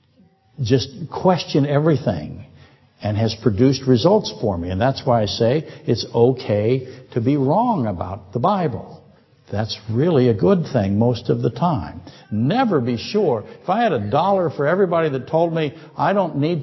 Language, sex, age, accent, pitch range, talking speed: English, male, 60-79, American, 100-135 Hz, 170 wpm